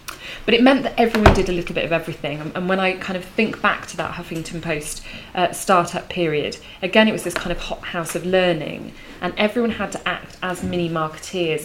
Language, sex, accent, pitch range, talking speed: English, female, British, 160-185 Hz, 220 wpm